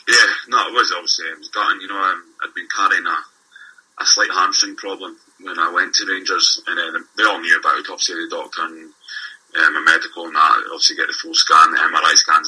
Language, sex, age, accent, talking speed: English, male, 20-39, British, 230 wpm